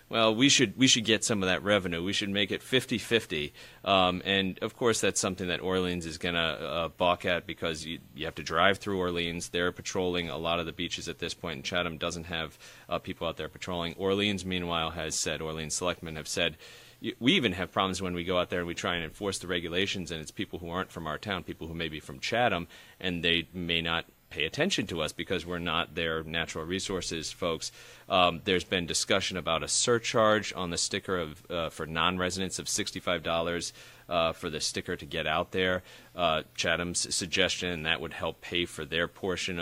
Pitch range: 85-100 Hz